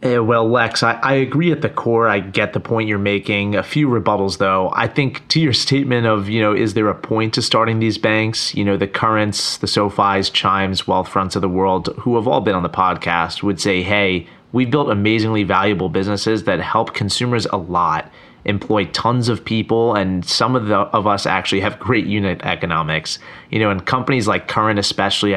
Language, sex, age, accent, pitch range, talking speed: English, male, 30-49, American, 95-115 Hz, 205 wpm